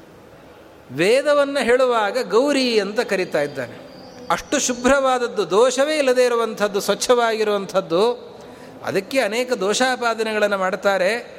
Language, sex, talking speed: Kannada, male, 85 wpm